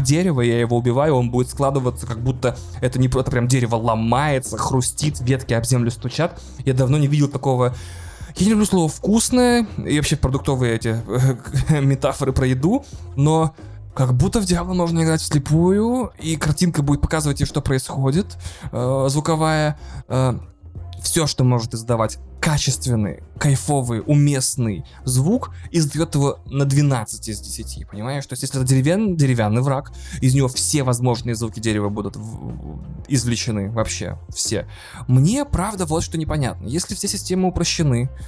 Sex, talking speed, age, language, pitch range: male, 150 wpm, 20-39, Russian, 115-150 Hz